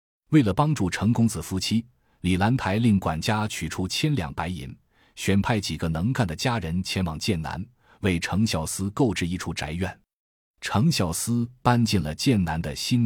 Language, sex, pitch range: Chinese, male, 85-115 Hz